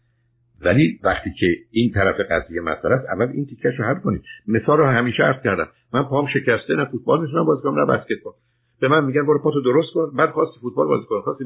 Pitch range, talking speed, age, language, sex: 120-150 Hz, 200 wpm, 60-79, Persian, male